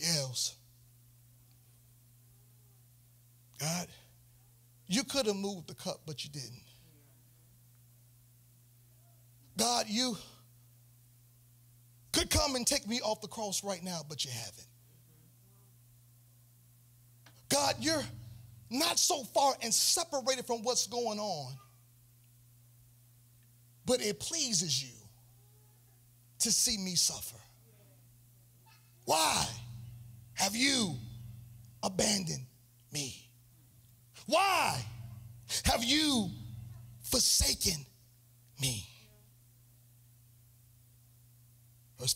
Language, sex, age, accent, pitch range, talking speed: English, male, 40-59, American, 120-150 Hz, 80 wpm